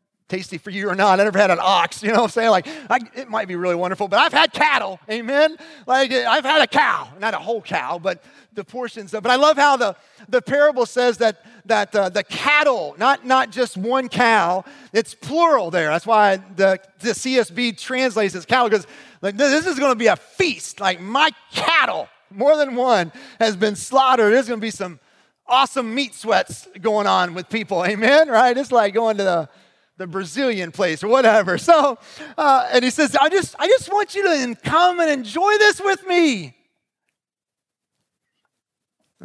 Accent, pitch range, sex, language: American, 170-255 Hz, male, English